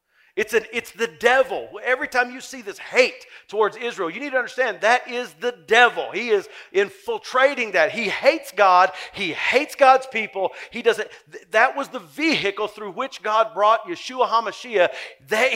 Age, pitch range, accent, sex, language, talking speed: 50-69, 185-305 Hz, American, male, English, 175 wpm